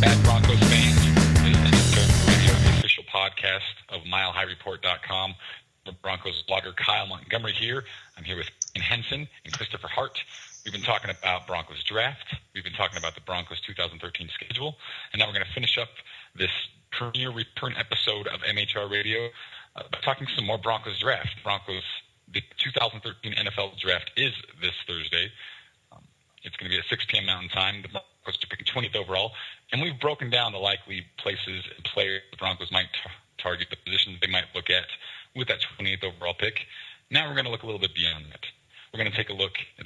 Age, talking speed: 30-49, 185 wpm